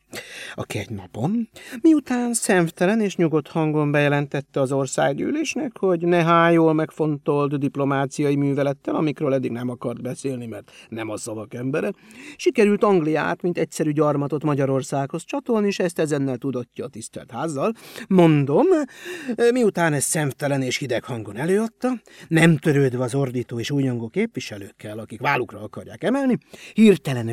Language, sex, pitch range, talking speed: Hungarian, male, 135-215 Hz, 135 wpm